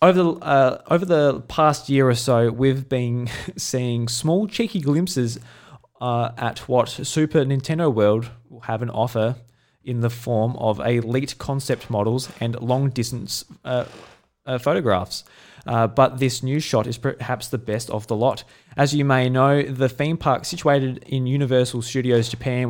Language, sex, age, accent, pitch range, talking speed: English, male, 20-39, Australian, 115-140 Hz, 160 wpm